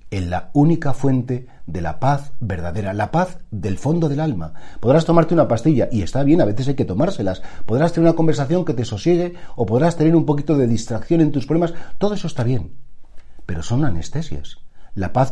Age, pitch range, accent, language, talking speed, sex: 40-59, 100-150 Hz, Spanish, Spanish, 205 wpm, male